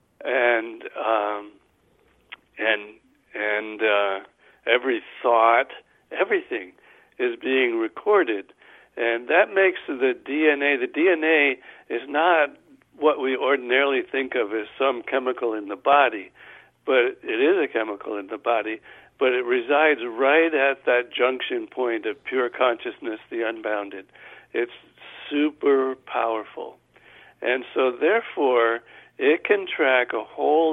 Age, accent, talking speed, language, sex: 60-79, American, 125 wpm, English, male